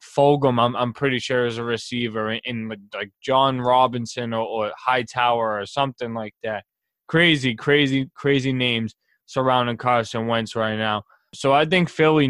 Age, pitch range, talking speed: 20-39, 120-135 Hz, 160 wpm